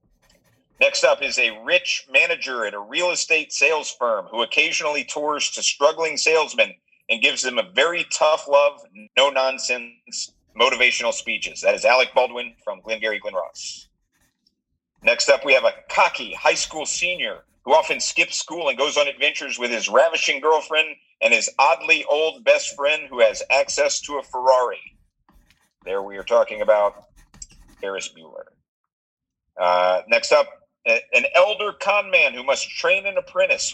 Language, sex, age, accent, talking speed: English, male, 50-69, American, 160 wpm